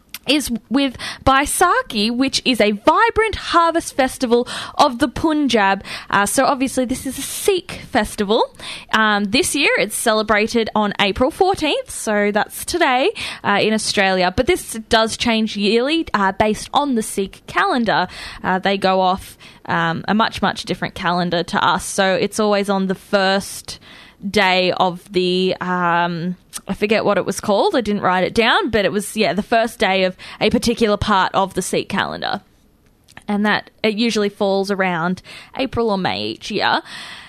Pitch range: 200-285 Hz